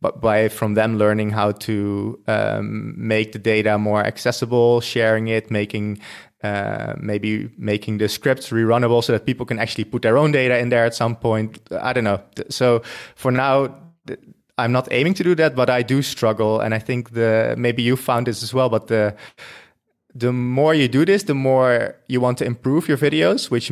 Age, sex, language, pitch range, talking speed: 20-39, male, English, 110-135 Hz, 195 wpm